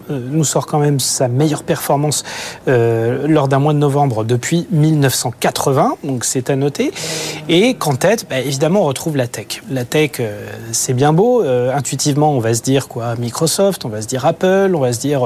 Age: 30-49